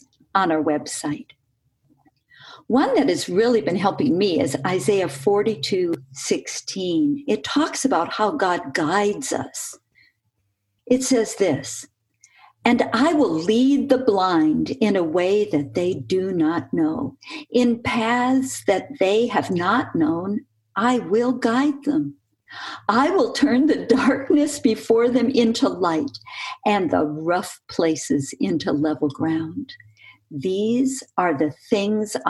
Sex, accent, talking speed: female, American, 125 wpm